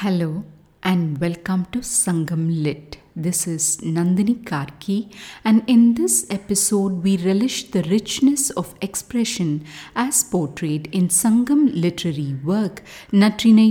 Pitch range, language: 165-225 Hz, English